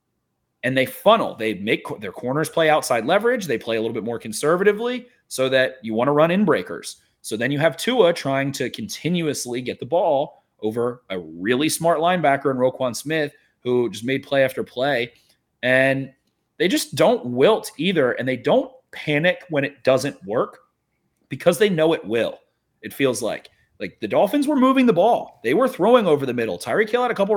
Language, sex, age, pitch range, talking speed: English, male, 30-49, 130-175 Hz, 195 wpm